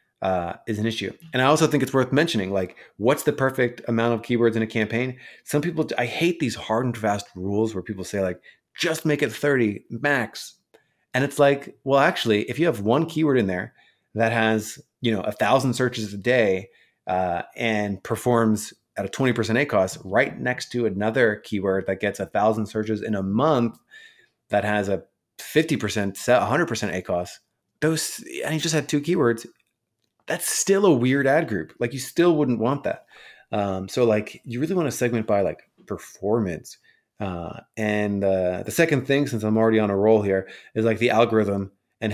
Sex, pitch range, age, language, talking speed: male, 105-130 Hz, 30-49, English, 190 wpm